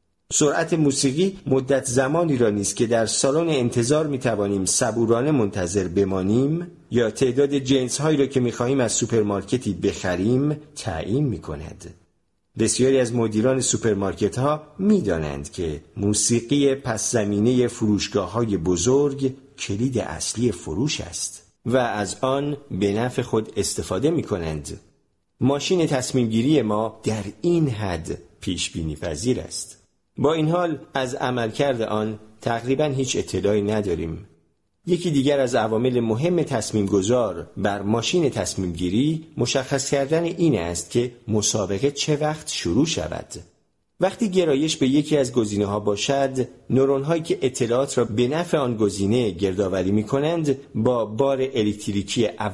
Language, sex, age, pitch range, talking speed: Persian, male, 50-69, 100-140 Hz, 135 wpm